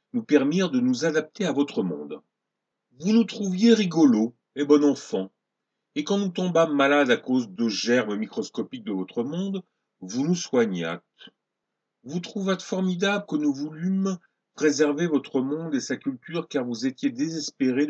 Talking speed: 160 wpm